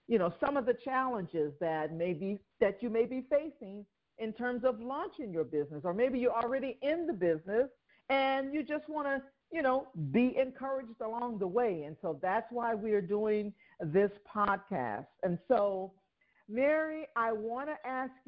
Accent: American